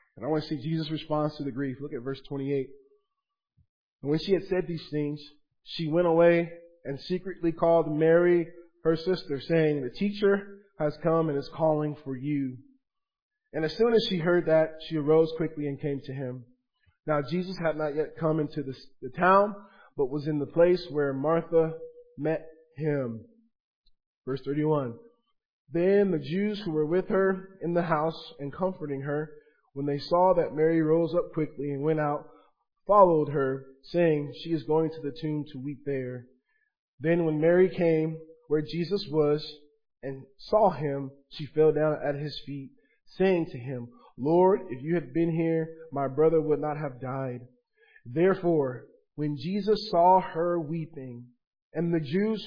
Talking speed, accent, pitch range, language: 175 wpm, American, 145-175 Hz, English